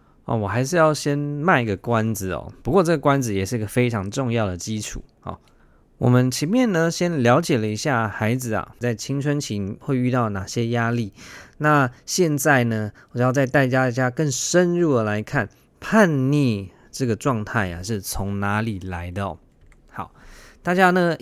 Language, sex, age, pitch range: Chinese, male, 20-39, 110-150 Hz